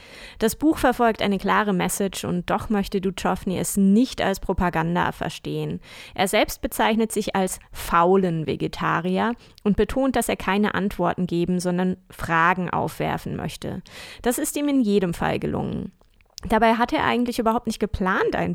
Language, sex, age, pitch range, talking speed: German, female, 20-39, 175-230 Hz, 155 wpm